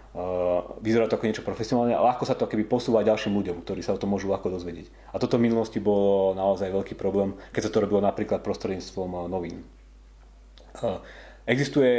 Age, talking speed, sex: 30-49, 175 wpm, male